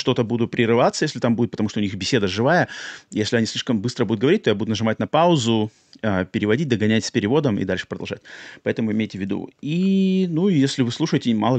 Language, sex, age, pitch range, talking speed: Russian, male, 30-49, 110-150 Hz, 210 wpm